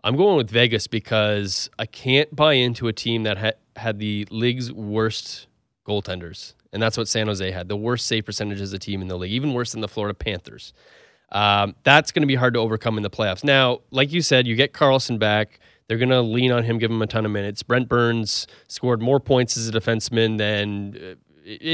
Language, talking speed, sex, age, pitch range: English, 225 wpm, male, 30-49, 105-125 Hz